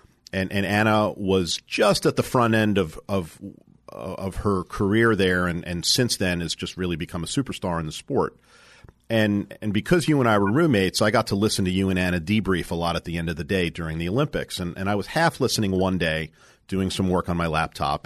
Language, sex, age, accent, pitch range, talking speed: English, male, 40-59, American, 90-115 Hz, 235 wpm